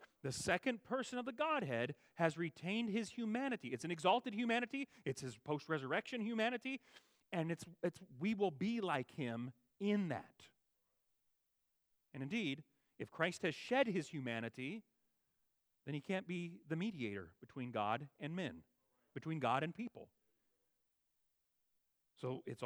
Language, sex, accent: English, male, American